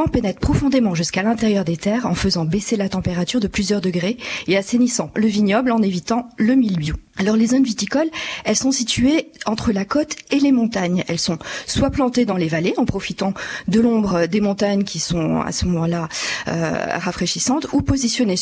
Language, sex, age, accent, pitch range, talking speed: French, female, 40-59, French, 185-240 Hz, 185 wpm